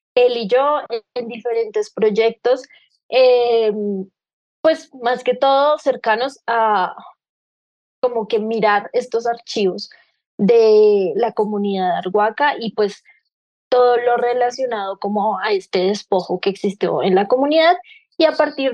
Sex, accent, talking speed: female, Colombian, 130 wpm